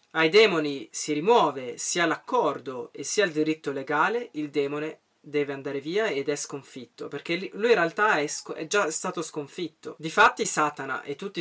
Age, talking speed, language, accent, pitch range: 30-49, 175 wpm, Italian, native, 140-190 Hz